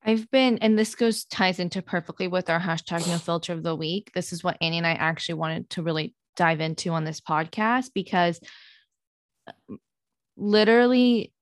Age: 20-39